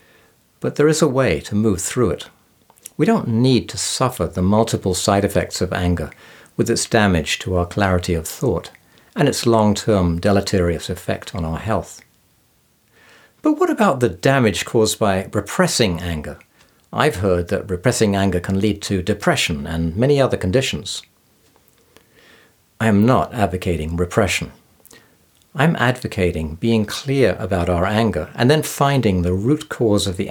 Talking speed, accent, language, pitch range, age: 155 wpm, British, English, 90-125 Hz, 60-79